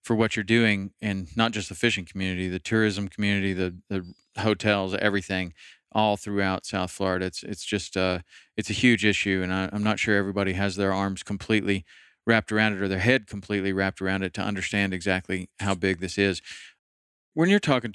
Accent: American